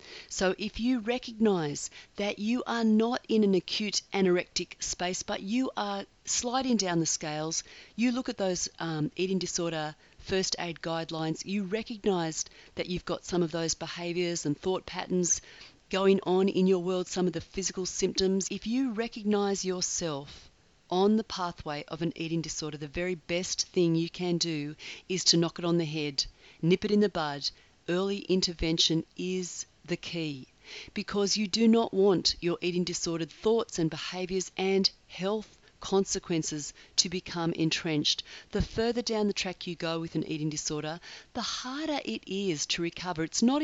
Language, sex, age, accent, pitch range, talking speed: English, female, 40-59, Australian, 165-205 Hz, 170 wpm